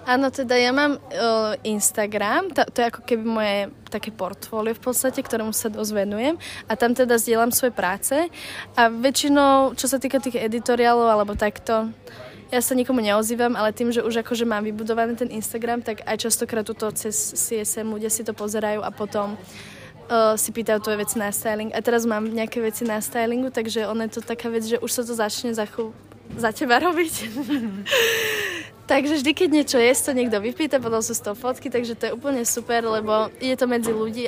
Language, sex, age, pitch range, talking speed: Czech, female, 20-39, 215-245 Hz, 200 wpm